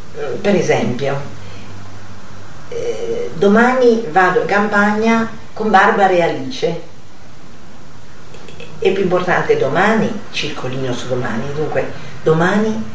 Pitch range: 145-230 Hz